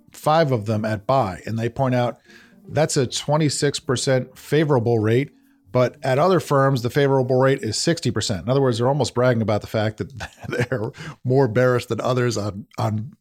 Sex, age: male, 40-59